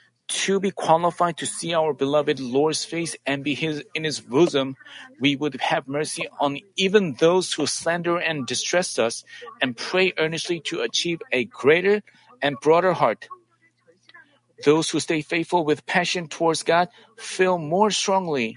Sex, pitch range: male, 155-180 Hz